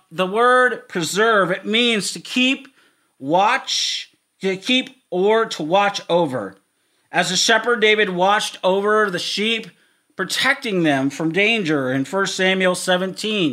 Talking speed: 135 wpm